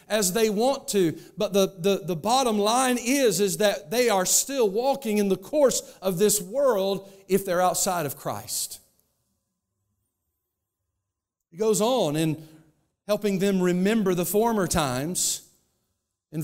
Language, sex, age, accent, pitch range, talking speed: English, male, 50-69, American, 170-230 Hz, 140 wpm